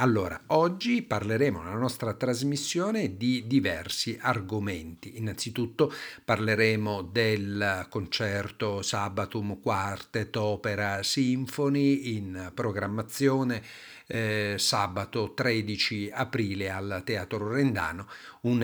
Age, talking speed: 50-69, 85 wpm